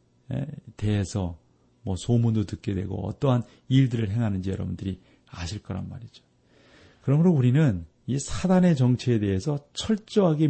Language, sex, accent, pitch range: Korean, male, native, 100-130 Hz